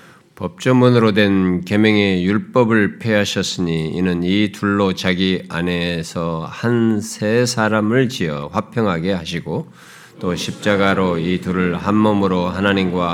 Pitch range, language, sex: 90-100 Hz, Korean, male